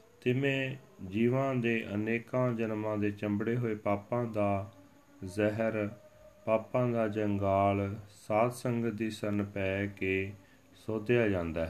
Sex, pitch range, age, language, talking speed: male, 100-120 Hz, 40-59, Punjabi, 120 wpm